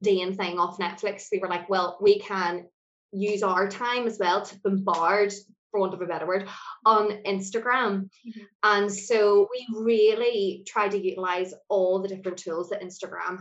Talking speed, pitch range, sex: 175 wpm, 185-230 Hz, female